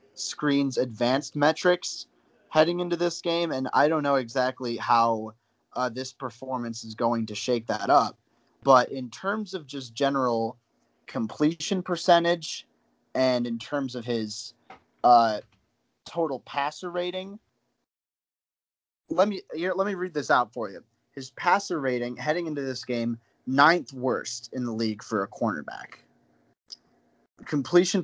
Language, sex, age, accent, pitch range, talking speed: English, male, 20-39, American, 120-155 Hz, 135 wpm